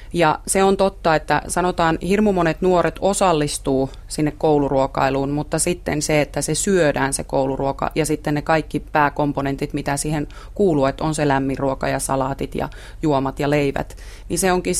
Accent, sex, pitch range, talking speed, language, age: native, female, 140-170 Hz, 170 wpm, Finnish, 30-49